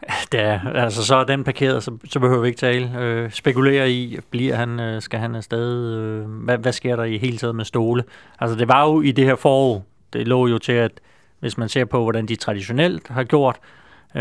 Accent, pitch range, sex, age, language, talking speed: native, 110-125 Hz, male, 30-49, Danish, 205 wpm